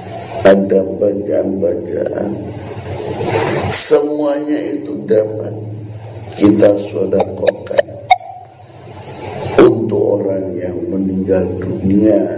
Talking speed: 60 wpm